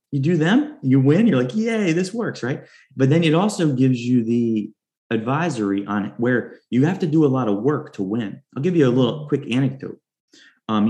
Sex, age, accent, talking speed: male, 30-49, American, 220 wpm